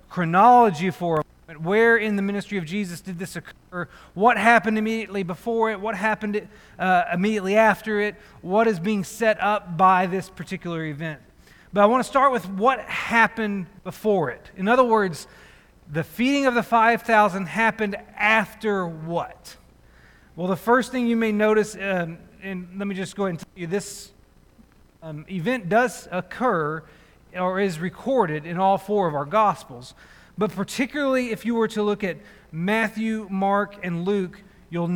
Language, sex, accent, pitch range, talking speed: English, male, American, 180-225 Hz, 170 wpm